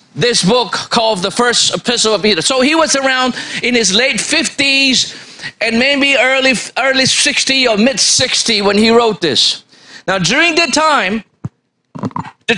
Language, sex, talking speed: English, male, 155 wpm